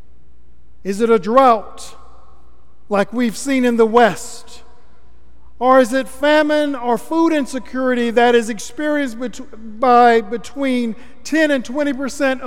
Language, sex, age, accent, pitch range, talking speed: English, male, 50-69, American, 195-270 Hz, 120 wpm